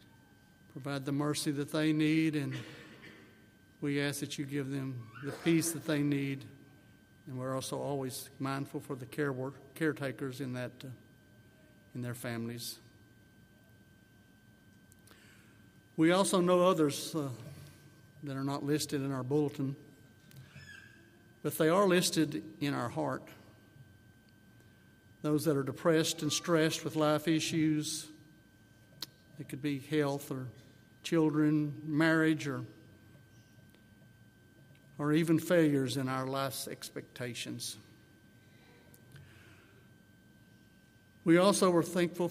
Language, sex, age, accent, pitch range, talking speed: English, male, 60-79, American, 120-155 Hz, 115 wpm